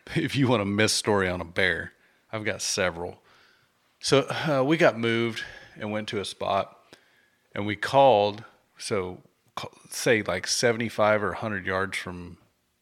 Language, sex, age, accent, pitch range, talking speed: English, male, 30-49, American, 95-115 Hz, 160 wpm